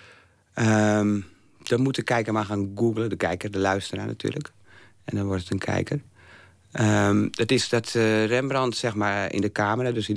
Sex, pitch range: male, 100-125 Hz